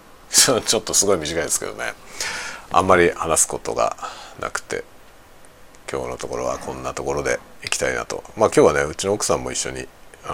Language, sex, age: Japanese, male, 40-59